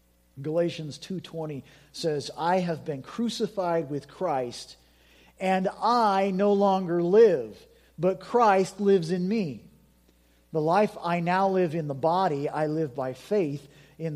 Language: English